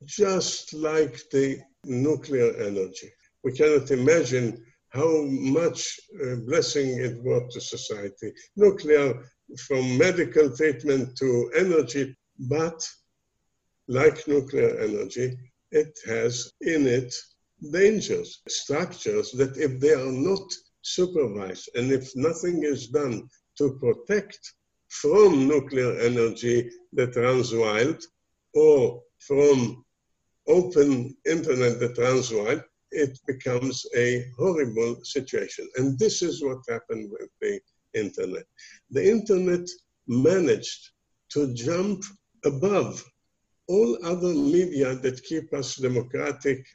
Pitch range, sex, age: 130-205 Hz, male, 60-79